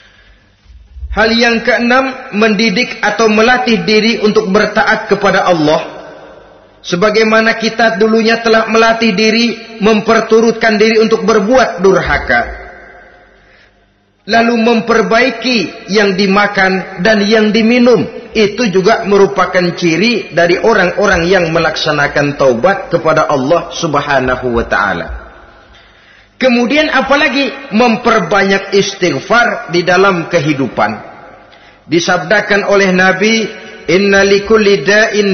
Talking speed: 90 wpm